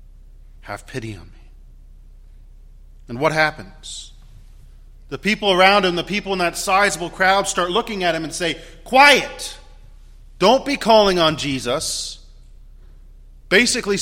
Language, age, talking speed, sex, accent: English, 40-59, 130 wpm, male, American